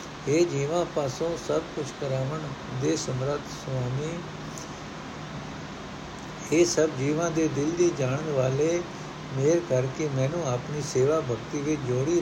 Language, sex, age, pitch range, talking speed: Punjabi, male, 60-79, 135-170 Hz, 125 wpm